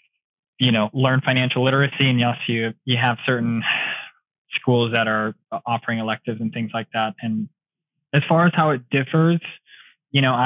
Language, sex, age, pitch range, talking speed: English, male, 20-39, 115-130 Hz, 165 wpm